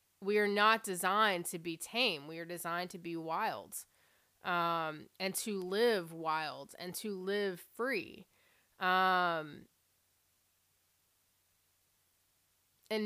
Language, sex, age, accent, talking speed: English, female, 20-39, American, 110 wpm